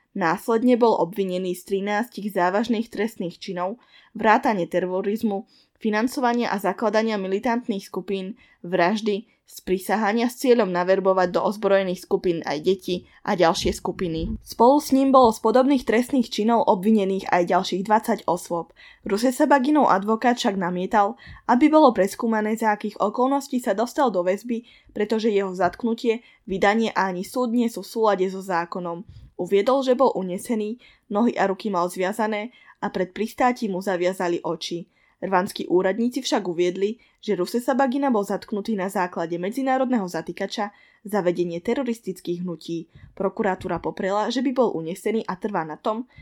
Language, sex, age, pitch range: Slovak, female, 10-29, 185-235 Hz